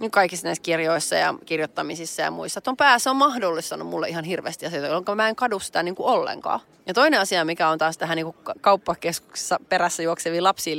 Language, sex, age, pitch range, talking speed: Finnish, female, 30-49, 160-180 Hz, 200 wpm